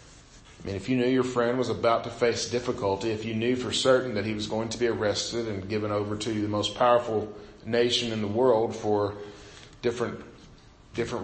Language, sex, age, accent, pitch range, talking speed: English, male, 40-59, American, 110-125 Hz, 205 wpm